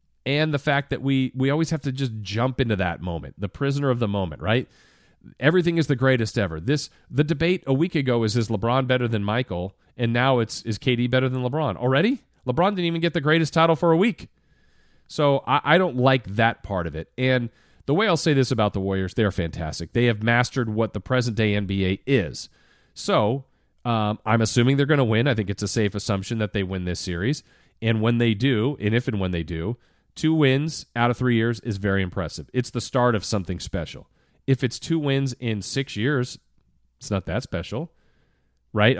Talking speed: 215 wpm